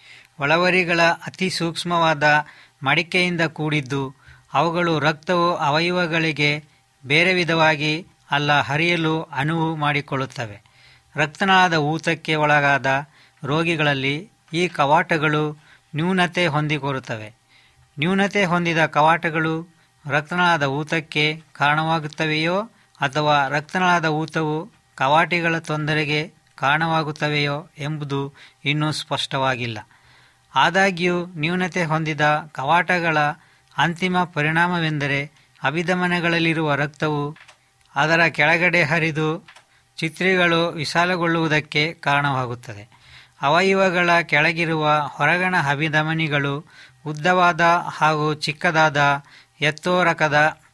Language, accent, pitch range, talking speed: Kannada, native, 145-170 Hz, 70 wpm